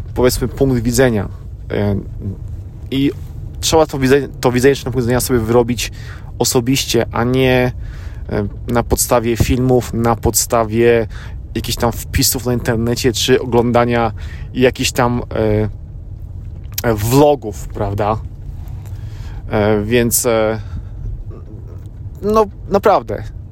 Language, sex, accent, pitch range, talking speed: Polish, male, native, 105-130 Hz, 90 wpm